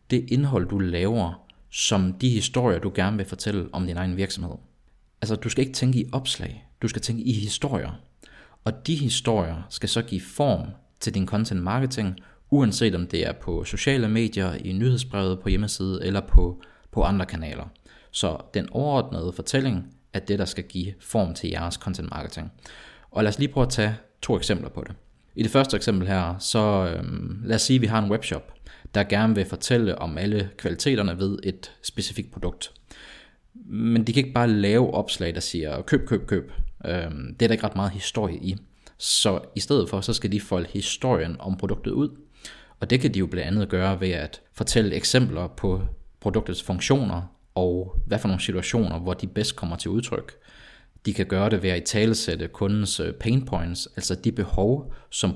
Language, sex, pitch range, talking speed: Danish, male, 90-115 Hz, 190 wpm